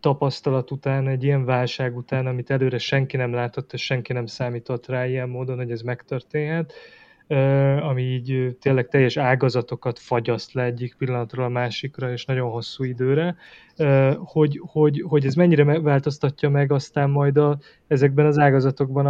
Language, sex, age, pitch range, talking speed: Hungarian, male, 20-39, 130-150 Hz, 155 wpm